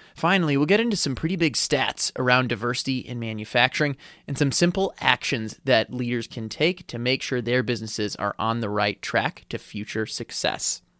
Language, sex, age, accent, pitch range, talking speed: English, male, 30-49, American, 115-145 Hz, 180 wpm